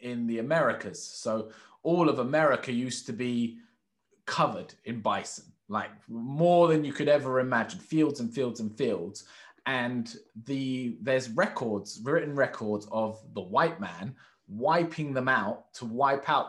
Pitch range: 115-150 Hz